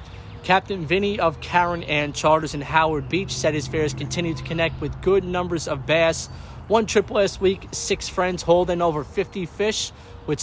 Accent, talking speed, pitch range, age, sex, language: American, 180 wpm, 145-180 Hz, 30-49, male, English